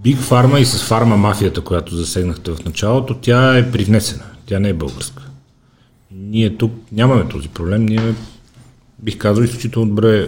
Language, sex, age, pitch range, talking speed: Bulgarian, male, 40-59, 95-115 Hz, 150 wpm